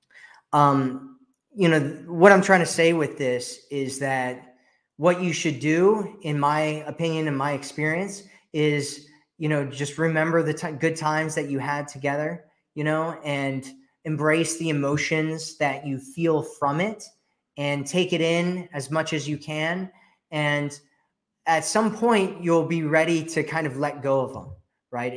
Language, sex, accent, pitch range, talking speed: English, male, American, 135-160 Hz, 165 wpm